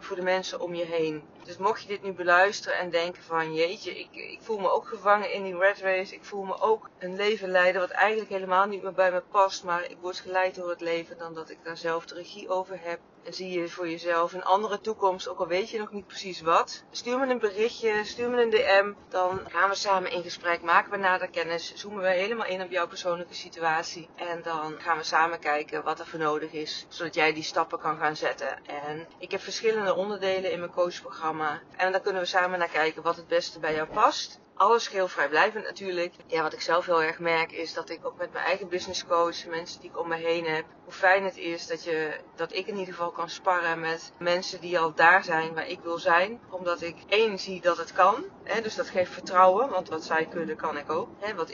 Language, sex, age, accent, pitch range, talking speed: Dutch, female, 30-49, Dutch, 165-190 Hz, 240 wpm